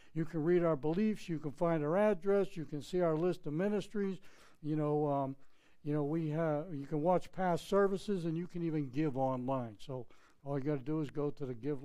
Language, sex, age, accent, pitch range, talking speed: English, male, 60-79, American, 140-170 Hz, 235 wpm